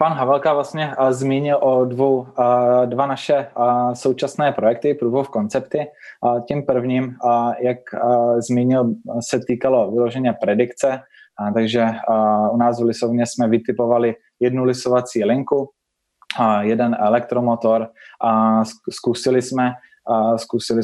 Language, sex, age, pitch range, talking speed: Czech, male, 20-39, 115-130 Hz, 105 wpm